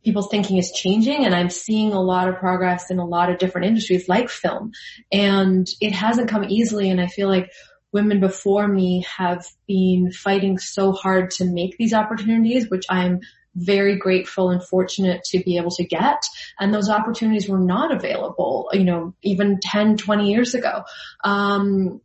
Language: English